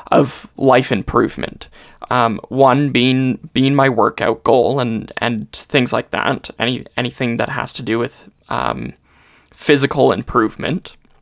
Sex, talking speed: male, 135 wpm